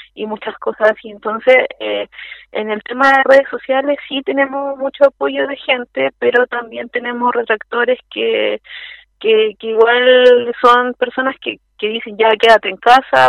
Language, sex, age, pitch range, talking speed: Spanish, female, 30-49, 205-260 Hz, 160 wpm